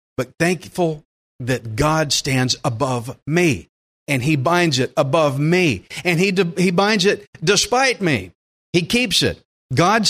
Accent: American